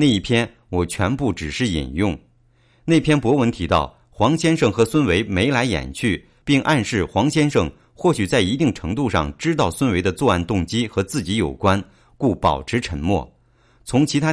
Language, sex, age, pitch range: English, male, 50-69, 90-145 Hz